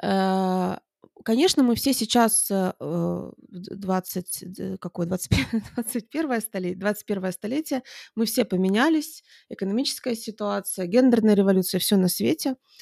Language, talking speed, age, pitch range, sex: Russian, 95 wpm, 20-39, 185-230 Hz, female